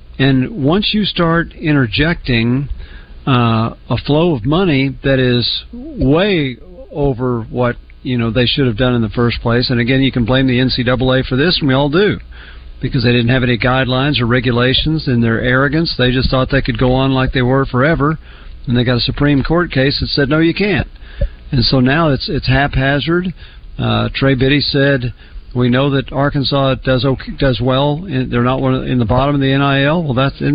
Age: 50-69